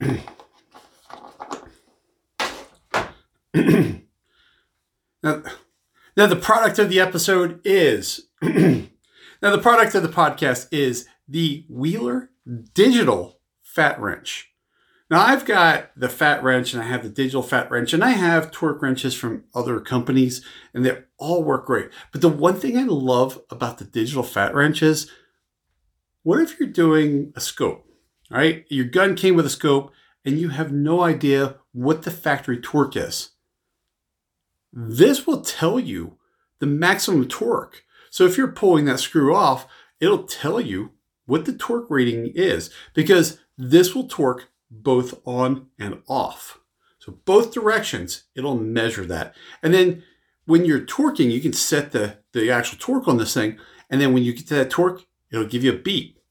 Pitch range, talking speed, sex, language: 125-185 Hz, 155 wpm, male, English